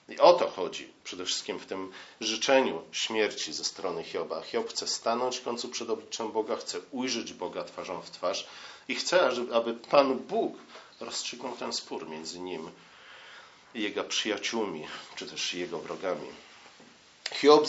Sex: male